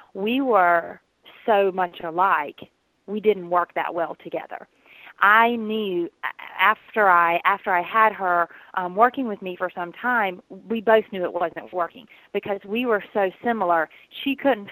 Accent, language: American, English